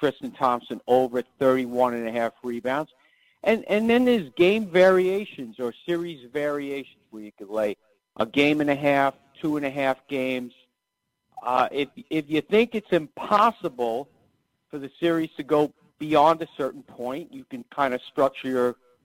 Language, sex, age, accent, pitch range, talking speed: English, male, 50-69, American, 125-155 Hz, 165 wpm